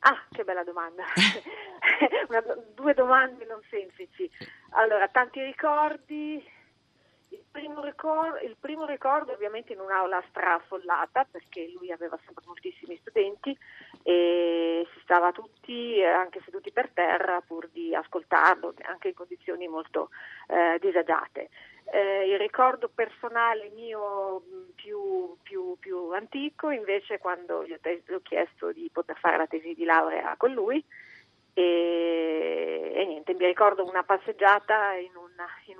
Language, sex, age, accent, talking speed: Italian, female, 40-59, native, 125 wpm